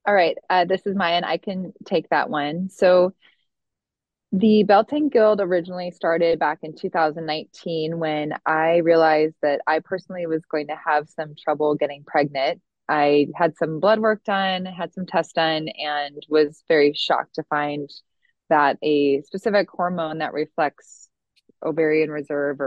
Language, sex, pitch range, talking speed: English, female, 145-175 Hz, 155 wpm